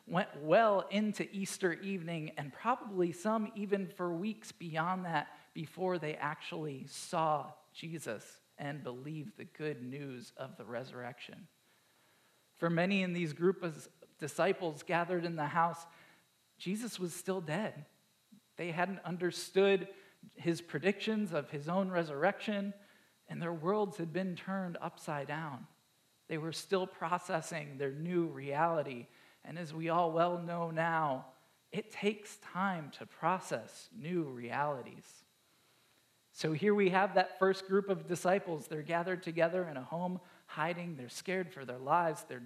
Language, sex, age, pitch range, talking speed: English, male, 40-59, 160-190 Hz, 145 wpm